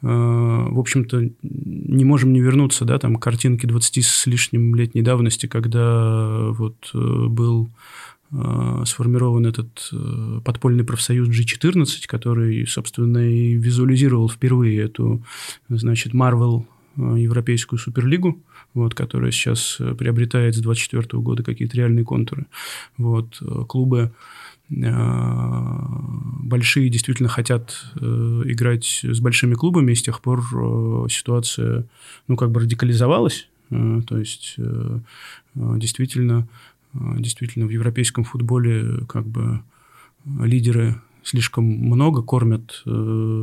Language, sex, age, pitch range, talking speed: Russian, male, 30-49, 115-125 Hz, 110 wpm